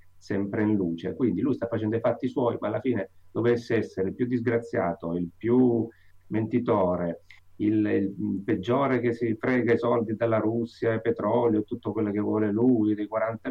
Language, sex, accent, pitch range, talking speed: Italian, male, native, 100-125 Hz, 180 wpm